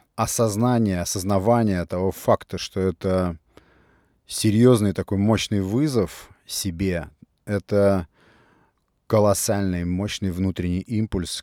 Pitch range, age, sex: 85-100 Hz, 30-49, male